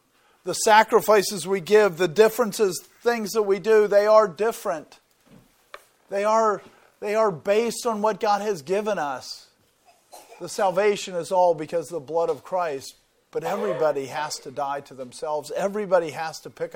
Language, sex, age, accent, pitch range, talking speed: English, male, 40-59, American, 150-190 Hz, 160 wpm